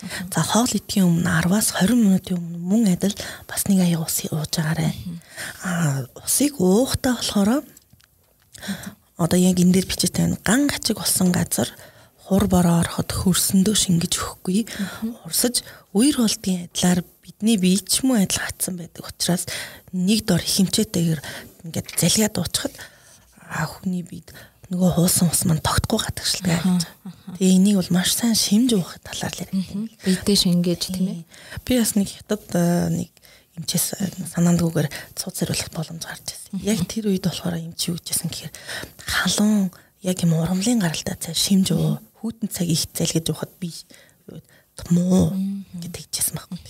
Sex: female